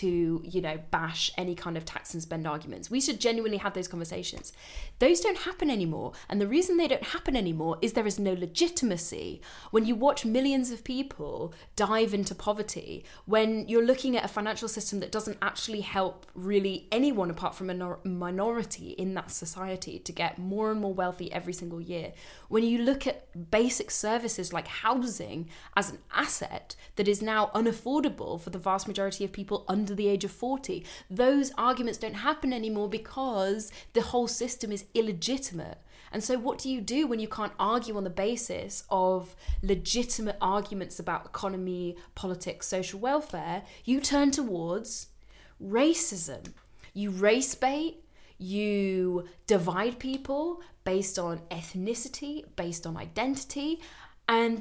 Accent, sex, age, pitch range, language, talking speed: British, female, 10-29, 185-245 Hz, English, 160 wpm